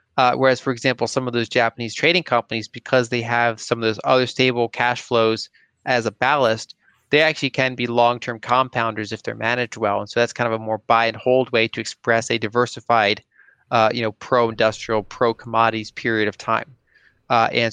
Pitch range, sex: 115-125 Hz, male